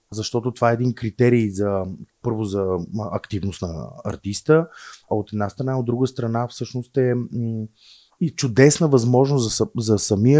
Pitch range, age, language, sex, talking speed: 110-130 Hz, 30-49, Bulgarian, male, 145 wpm